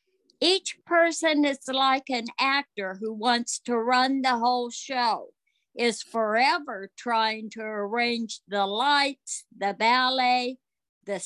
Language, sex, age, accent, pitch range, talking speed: English, female, 60-79, American, 230-300 Hz, 125 wpm